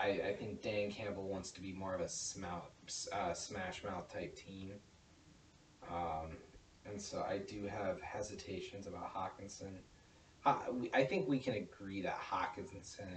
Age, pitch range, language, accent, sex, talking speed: 30-49, 85-100 Hz, English, American, male, 150 wpm